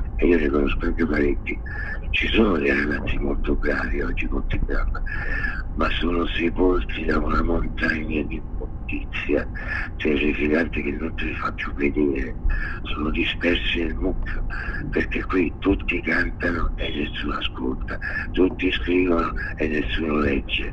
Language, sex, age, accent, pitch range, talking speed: Italian, male, 60-79, native, 75-85 Hz, 125 wpm